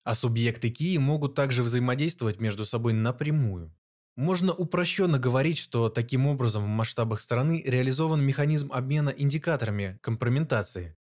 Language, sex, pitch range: Russian, male, 115-145 Hz